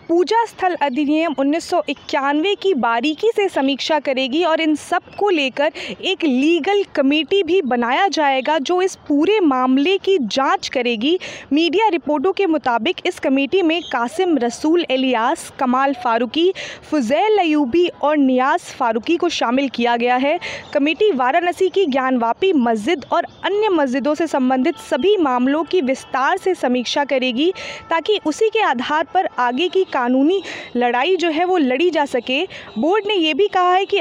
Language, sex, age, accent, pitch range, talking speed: Hindi, female, 20-39, native, 265-360 Hz, 155 wpm